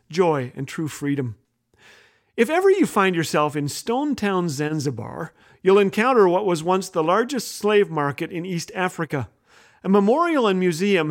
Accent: American